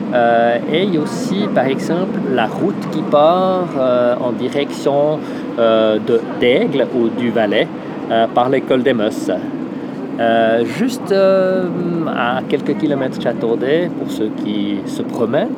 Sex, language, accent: male, French, French